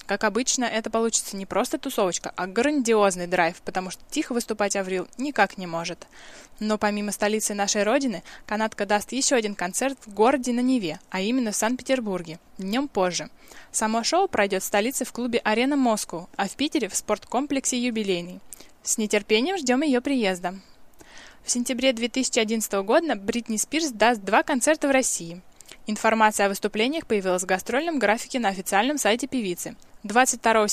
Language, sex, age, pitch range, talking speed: Russian, female, 10-29, 200-255 Hz, 155 wpm